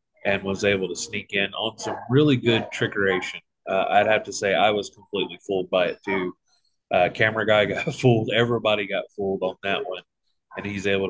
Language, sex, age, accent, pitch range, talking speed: English, male, 30-49, American, 95-115 Hz, 200 wpm